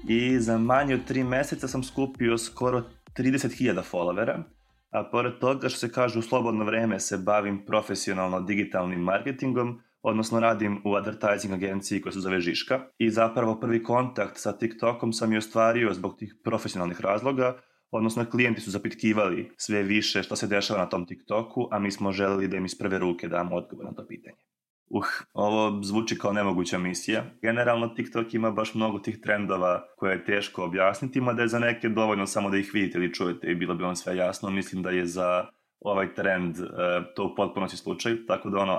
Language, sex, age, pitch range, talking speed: Croatian, male, 20-39, 100-115 Hz, 185 wpm